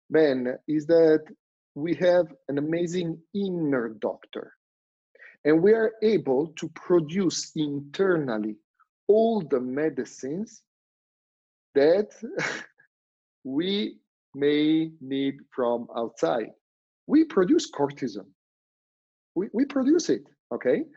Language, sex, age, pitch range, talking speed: English, male, 40-59, 135-175 Hz, 95 wpm